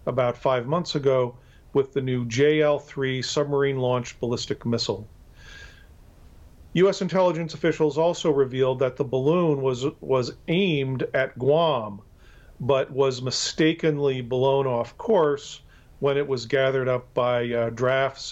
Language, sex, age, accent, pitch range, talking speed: English, male, 40-59, American, 125-155 Hz, 125 wpm